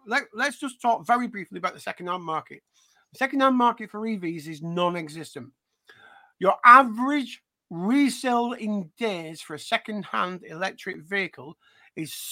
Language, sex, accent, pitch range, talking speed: English, male, British, 175-245 Hz, 130 wpm